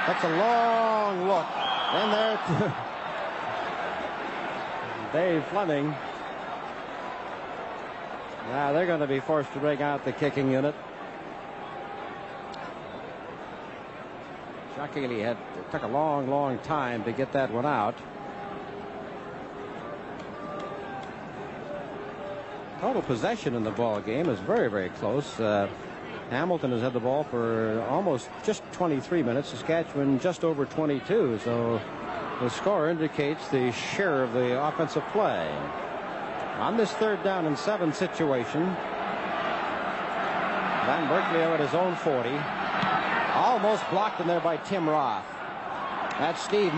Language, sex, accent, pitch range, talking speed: English, male, American, 140-175 Hz, 115 wpm